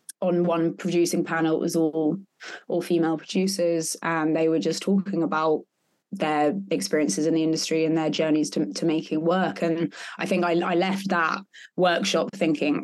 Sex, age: female, 20-39